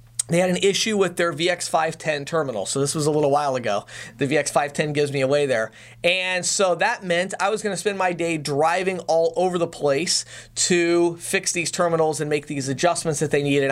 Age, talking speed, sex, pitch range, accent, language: 30-49, 215 wpm, male, 160-200 Hz, American, English